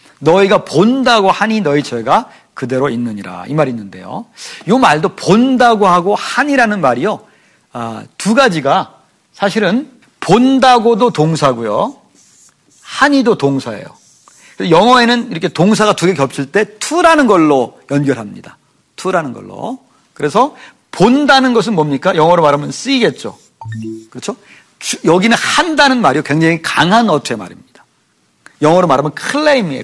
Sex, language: male, Korean